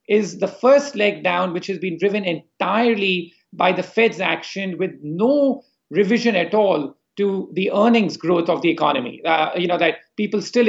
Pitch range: 175-220 Hz